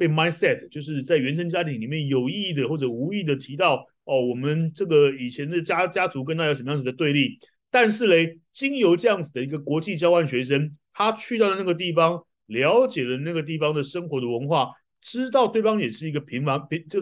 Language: Chinese